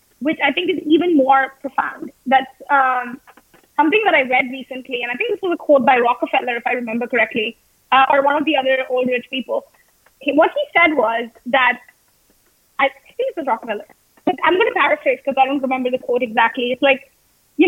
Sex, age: female, 20-39